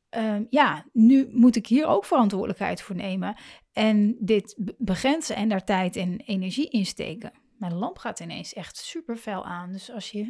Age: 30-49